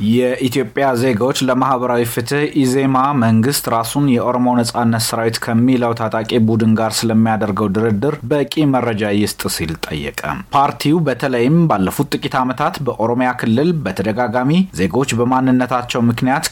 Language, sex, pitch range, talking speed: Amharic, male, 115-135 Hz, 110 wpm